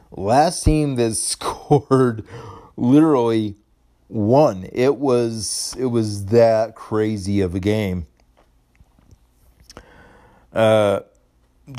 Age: 40-59